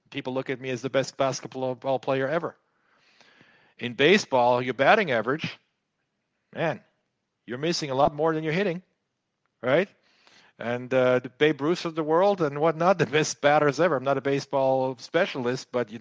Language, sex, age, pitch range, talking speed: English, male, 50-69, 125-155 Hz, 175 wpm